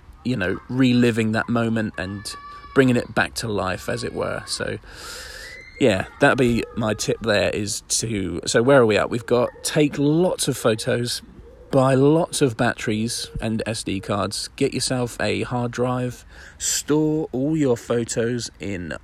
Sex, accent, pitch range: male, British, 105-135 Hz